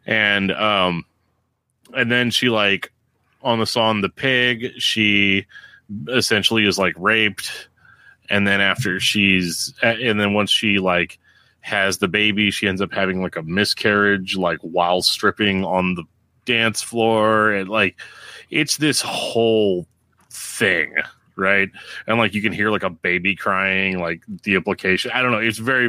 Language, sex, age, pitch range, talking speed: English, male, 30-49, 100-120 Hz, 155 wpm